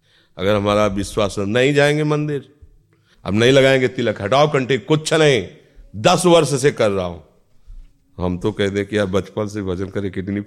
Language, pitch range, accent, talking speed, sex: Hindi, 95-130 Hz, native, 180 wpm, male